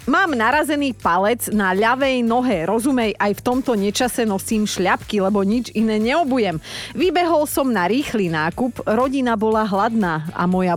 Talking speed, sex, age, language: 150 wpm, female, 30-49, Slovak